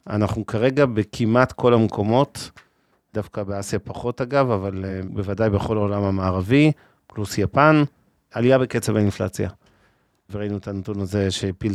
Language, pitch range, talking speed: Hebrew, 105-125 Hz, 125 wpm